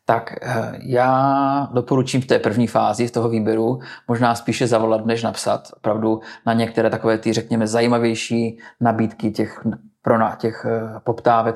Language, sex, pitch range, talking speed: Czech, male, 110-120 Hz, 145 wpm